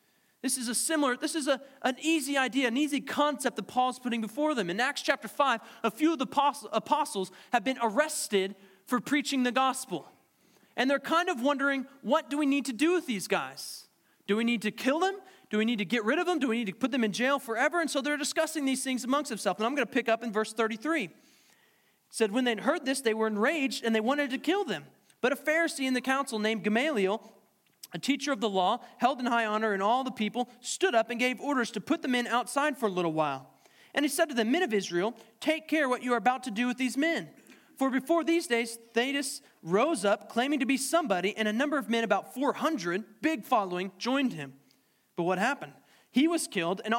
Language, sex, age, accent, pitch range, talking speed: English, male, 20-39, American, 220-285 Hz, 235 wpm